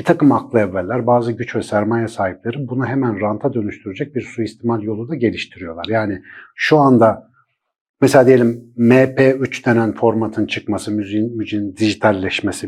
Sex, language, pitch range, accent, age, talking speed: male, Turkish, 110-140 Hz, native, 50-69, 140 wpm